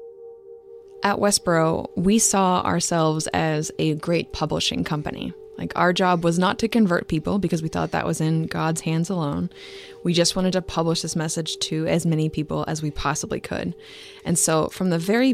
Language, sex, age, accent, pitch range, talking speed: English, female, 20-39, American, 155-215 Hz, 185 wpm